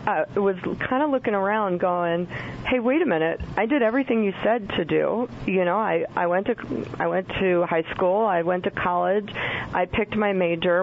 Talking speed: 190 wpm